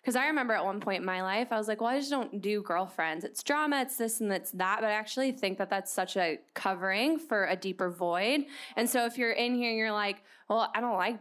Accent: American